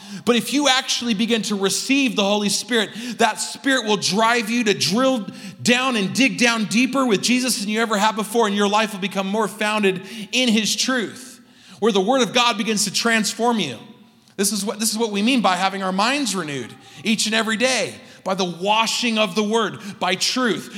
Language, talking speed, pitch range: English, 210 wpm, 175-230 Hz